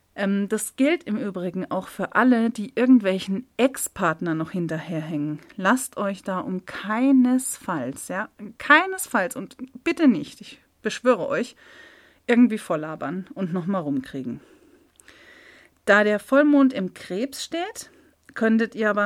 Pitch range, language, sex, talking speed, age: 175-250 Hz, German, female, 125 wpm, 40-59